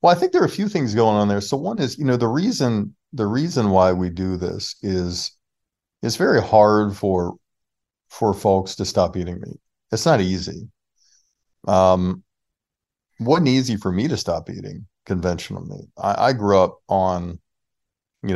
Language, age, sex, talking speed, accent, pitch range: English, 40-59, male, 175 wpm, American, 95-115 Hz